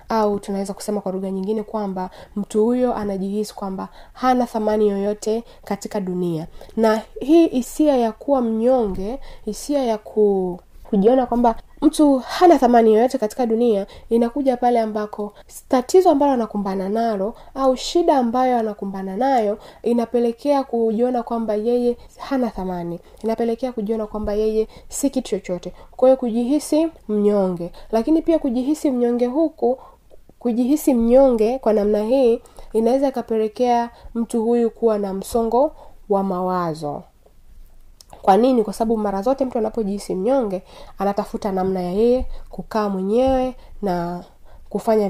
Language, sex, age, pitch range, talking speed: Swahili, female, 20-39, 205-255 Hz, 130 wpm